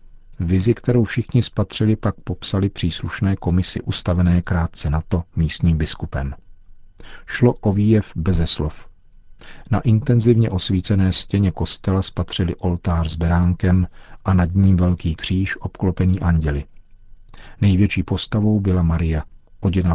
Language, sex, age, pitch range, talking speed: Czech, male, 40-59, 85-100 Hz, 120 wpm